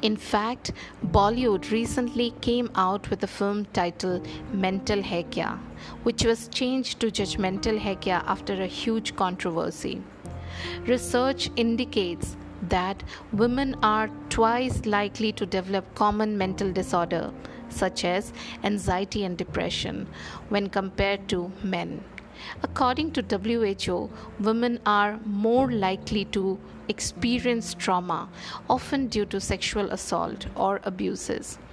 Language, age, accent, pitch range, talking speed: English, 50-69, Indian, 185-225 Hz, 115 wpm